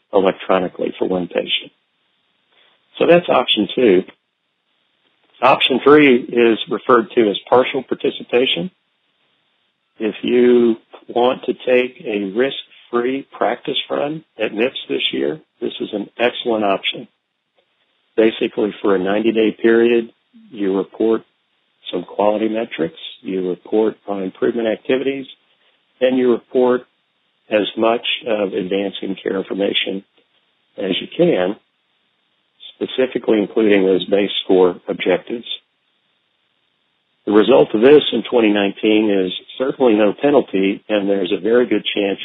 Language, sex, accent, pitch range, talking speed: English, male, American, 100-125 Hz, 120 wpm